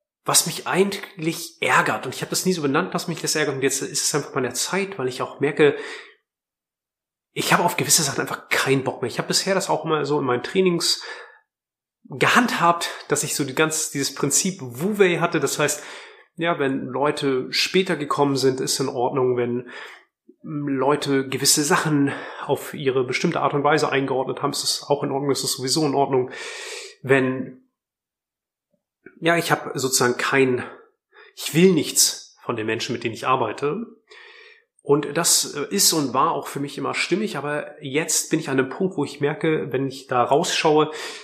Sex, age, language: male, 30-49, German